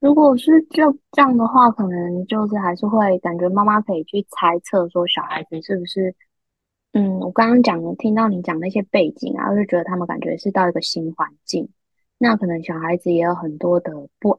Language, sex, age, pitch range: Chinese, female, 20-39, 175-220 Hz